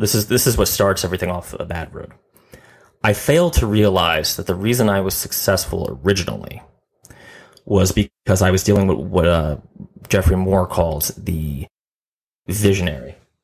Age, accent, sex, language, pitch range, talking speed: 30-49, American, male, English, 85-105 Hz, 155 wpm